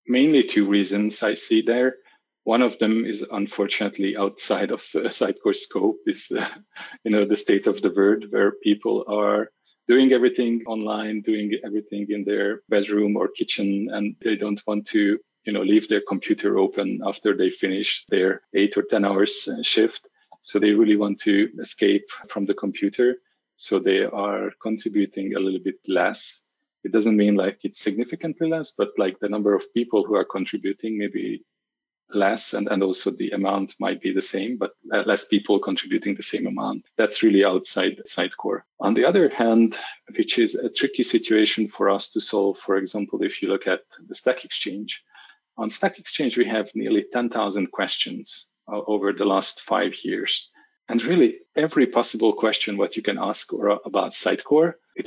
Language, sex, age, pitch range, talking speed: English, male, 40-59, 100-155 Hz, 175 wpm